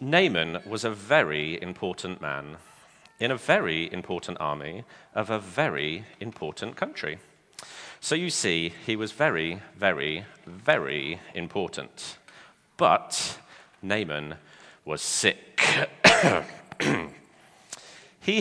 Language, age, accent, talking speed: English, 40-59, British, 100 wpm